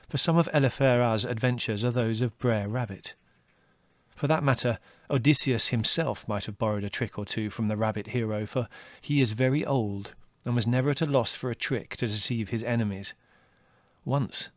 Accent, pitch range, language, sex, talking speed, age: British, 110-130 Hz, English, male, 185 wpm, 40-59